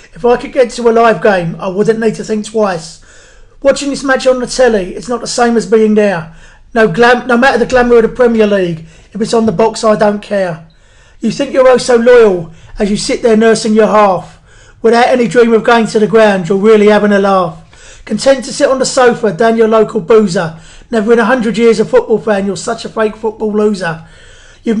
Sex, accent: male, British